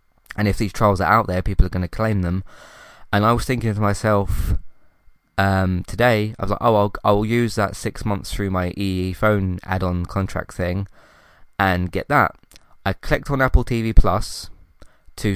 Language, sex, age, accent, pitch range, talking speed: English, male, 20-39, British, 95-115 Hz, 190 wpm